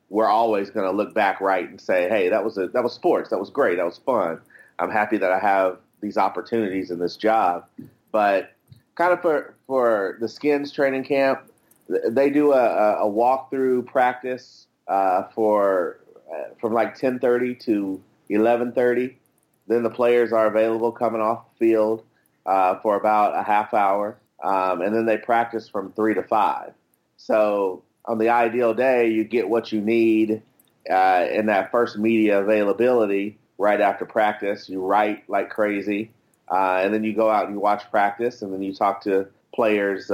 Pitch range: 100-120 Hz